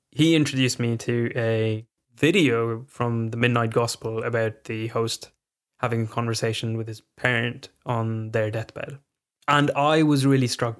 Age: 10-29